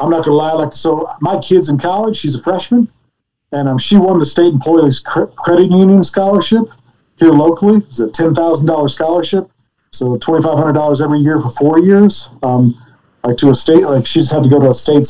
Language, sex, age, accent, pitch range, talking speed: English, male, 50-69, American, 135-165 Hz, 205 wpm